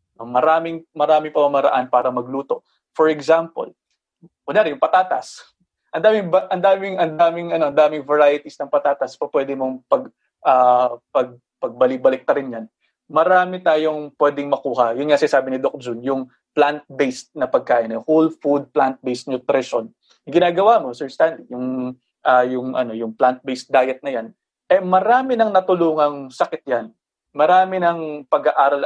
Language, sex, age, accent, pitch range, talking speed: English, male, 20-39, Filipino, 130-170 Hz, 145 wpm